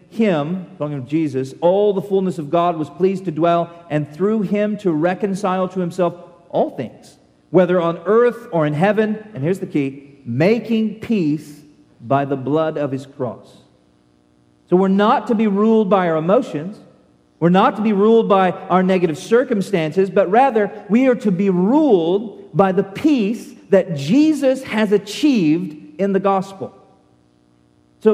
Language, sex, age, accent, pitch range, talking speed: English, male, 40-59, American, 175-230 Hz, 160 wpm